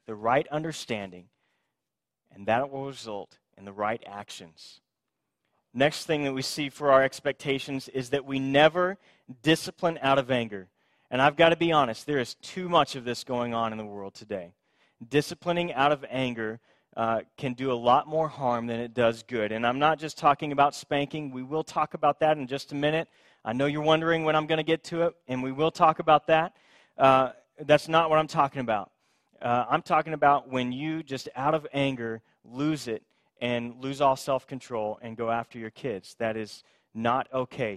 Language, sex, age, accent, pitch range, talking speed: English, male, 30-49, American, 120-150 Hz, 200 wpm